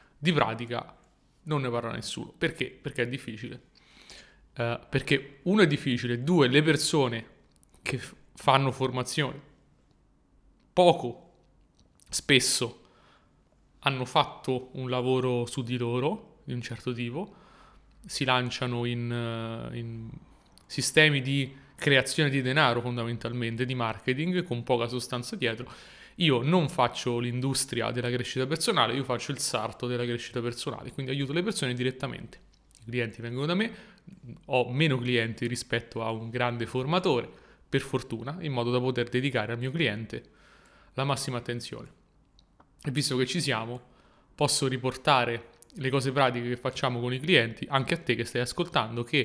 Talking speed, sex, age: 140 wpm, male, 30-49